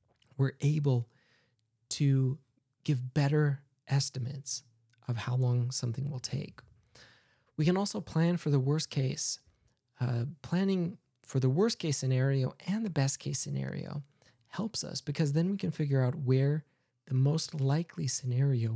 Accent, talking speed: American, 145 wpm